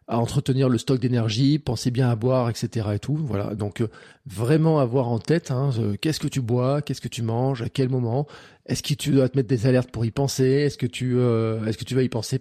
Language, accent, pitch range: French, French, 115-140 Hz